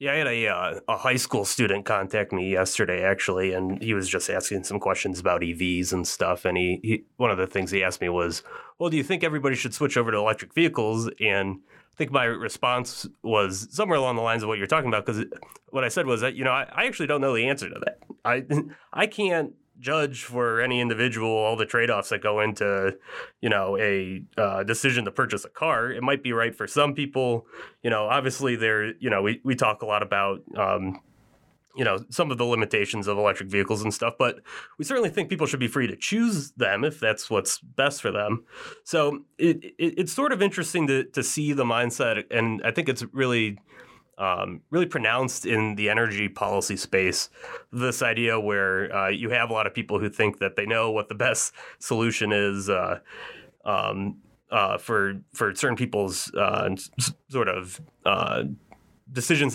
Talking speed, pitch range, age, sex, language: 205 wpm, 105-135 Hz, 30-49, male, English